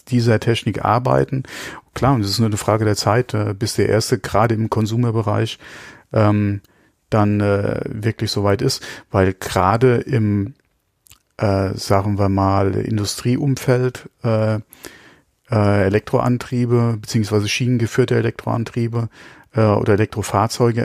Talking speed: 105 wpm